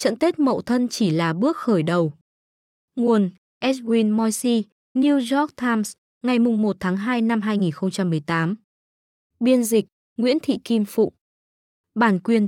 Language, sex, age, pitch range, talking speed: Vietnamese, female, 20-39, 190-245 Hz, 140 wpm